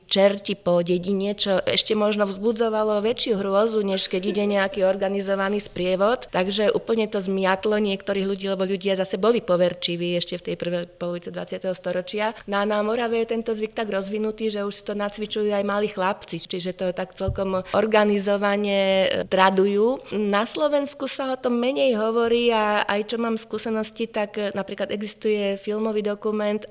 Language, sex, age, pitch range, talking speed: Slovak, female, 20-39, 185-215 Hz, 165 wpm